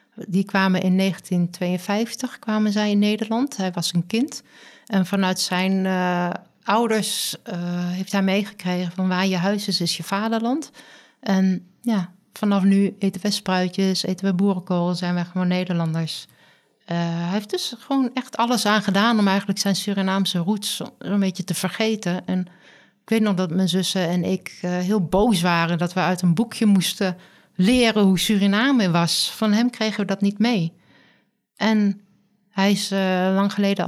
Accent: Dutch